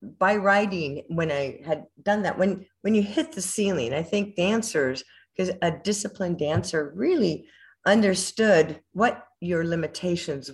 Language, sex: English, female